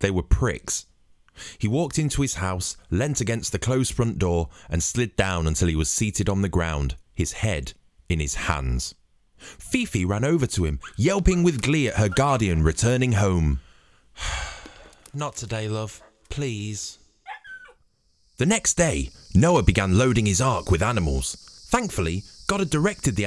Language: English